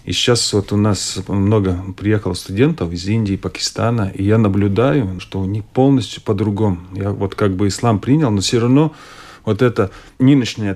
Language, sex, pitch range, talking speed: Russian, male, 100-125 Hz, 175 wpm